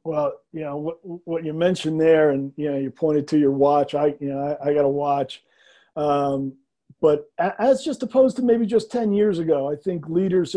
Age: 40-59